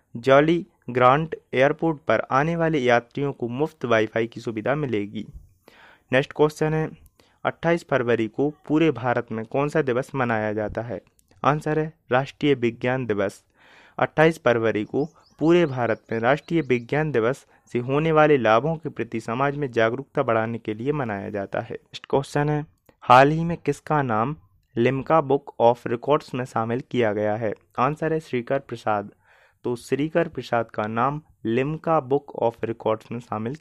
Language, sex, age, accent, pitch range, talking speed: Hindi, male, 30-49, native, 115-150 Hz, 160 wpm